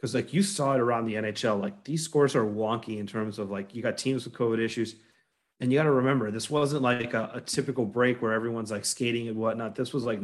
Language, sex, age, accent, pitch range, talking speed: English, male, 30-49, American, 110-130 Hz, 260 wpm